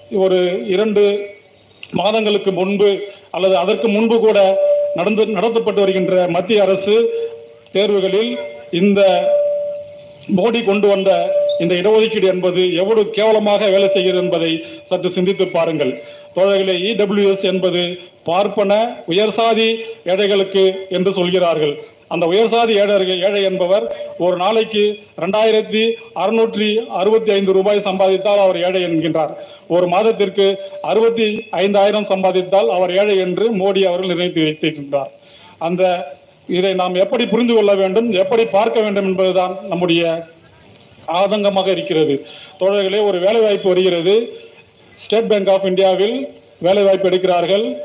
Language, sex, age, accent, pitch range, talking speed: Tamil, male, 40-59, native, 185-215 Hz, 100 wpm